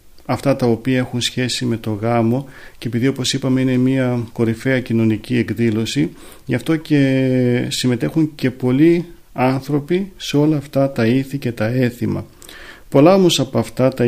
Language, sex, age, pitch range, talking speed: Greek, male, 40-59, 115-135 Hz, 160 wpm